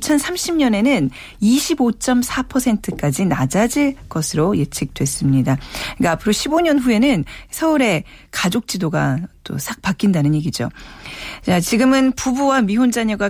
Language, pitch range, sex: Korean, 160-250 Hz, female